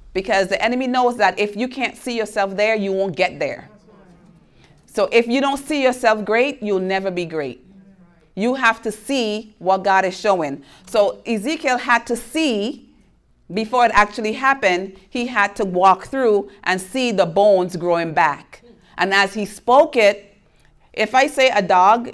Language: English